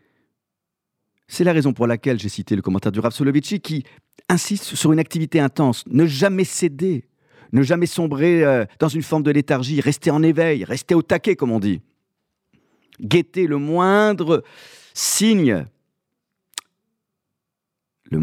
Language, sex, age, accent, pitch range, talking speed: French, male, 50-69, French, 100-155 Hz, 140 wpm